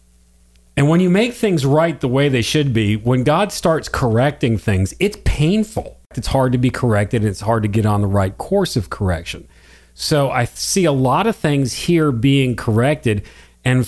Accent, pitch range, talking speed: American, 100-145 Hz, 195 wpm